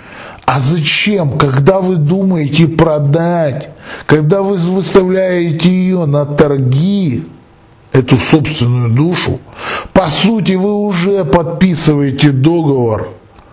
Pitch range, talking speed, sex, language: 135-180 Hz, 95 wpm, male, Russian